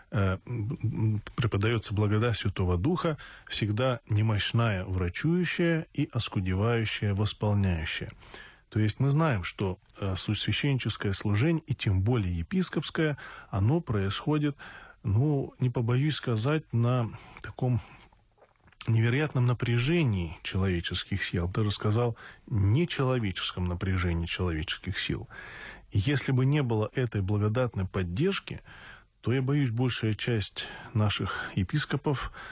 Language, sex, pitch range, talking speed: Russian, male, 100-130 Hz, 100 wpm